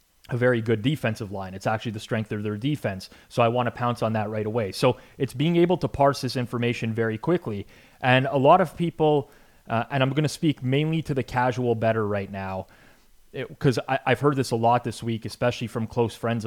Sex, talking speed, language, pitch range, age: male, 220 wpm, English, 110-135 Hz, 30-49